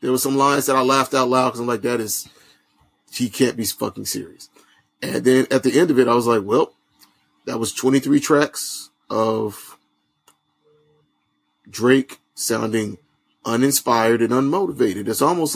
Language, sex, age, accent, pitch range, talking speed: English, male, 30-49, American, 115-140 Hz, 160 wpm